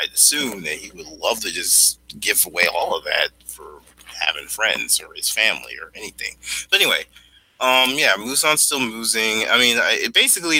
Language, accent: English, American